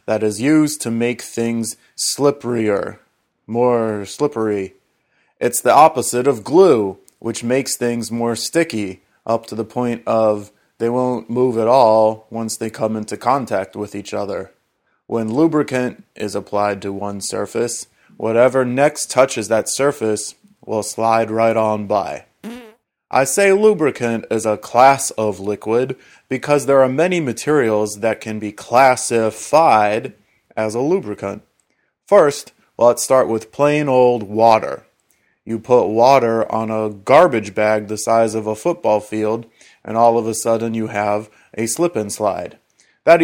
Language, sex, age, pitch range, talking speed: English, male, 30-49, 110-130 Hz, 145 wpm